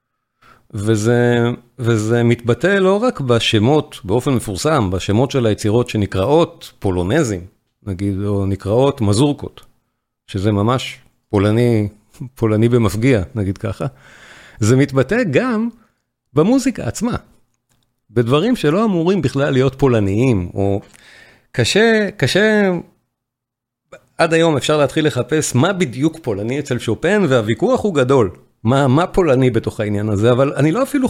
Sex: male